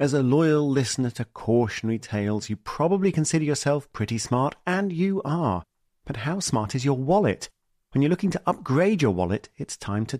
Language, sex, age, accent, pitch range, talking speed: English, male, 40-59, British, 105-150 Hz, 190 wpm